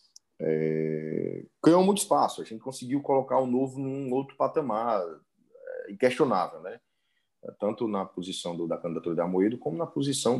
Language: Portuguese